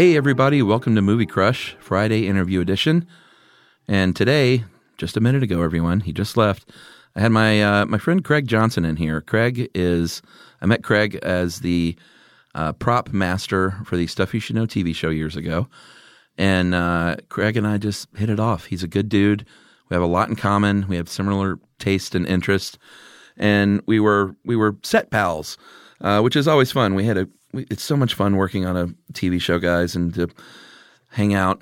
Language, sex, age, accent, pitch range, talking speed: English, male, 40-59, American, 90-110 Hz, 195 wpm